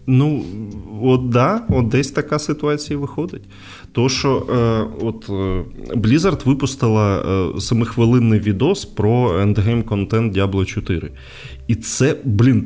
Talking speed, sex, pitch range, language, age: 125 wpm, male, 110-135 Hz, Ukrainian, 20-39